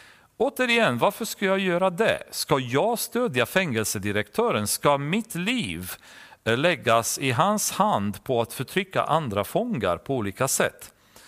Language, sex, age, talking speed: Swedish, male, 40-59, 135 wpm